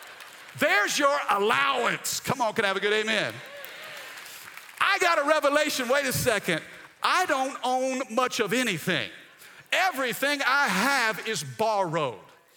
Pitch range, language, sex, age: 170-255 Hz, English, male, 50-69